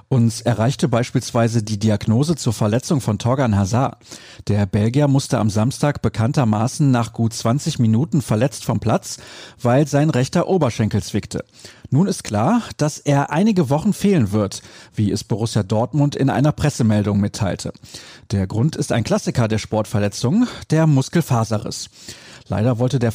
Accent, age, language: German, 40-59, German